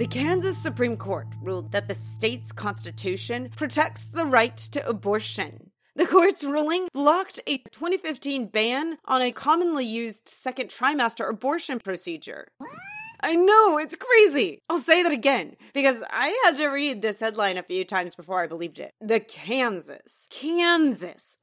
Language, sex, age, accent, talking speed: English, female, 30-49, American, 150 wpm